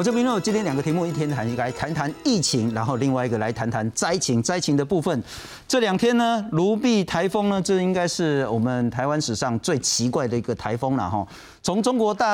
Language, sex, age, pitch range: Chinese, male, 50-69, 140-210 Hz